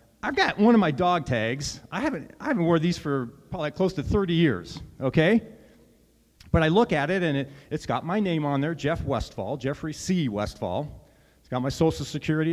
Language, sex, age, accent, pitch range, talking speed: English, male, 40-59, American, 140-185 Hz, 210 wpm